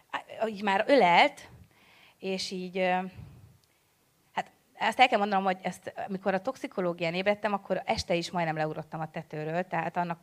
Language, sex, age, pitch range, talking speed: Hungarian, female, 30-49, 165-205 Hz, 145 wpm